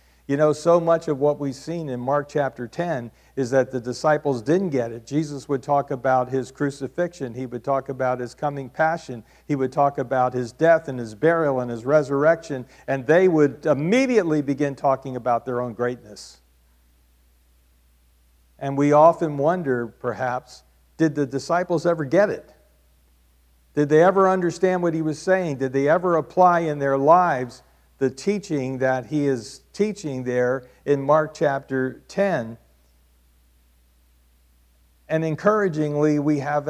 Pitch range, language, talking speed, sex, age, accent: 120-150 Hz, English, 155 wpm, male, 50-69, American